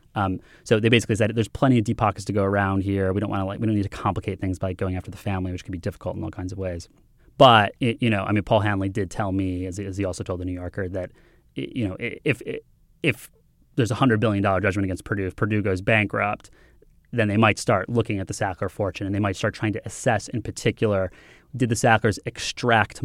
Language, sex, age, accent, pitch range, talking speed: English, male, 30-49, American, 95-115 Hz, 245 wpm